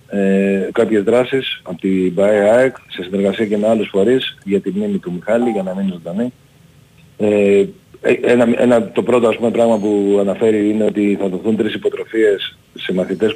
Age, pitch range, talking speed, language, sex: 40-59, 100-125 Hz, 170 wpm, Greek, male